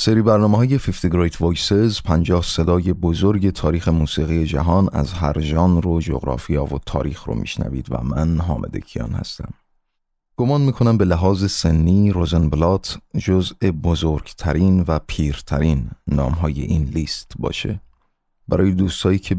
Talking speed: 125 wpm